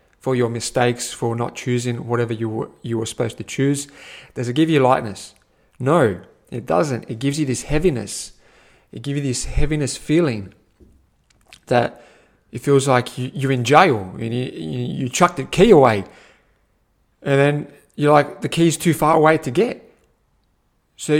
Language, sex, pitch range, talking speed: English, male, 120-150 Hz, 165 wpm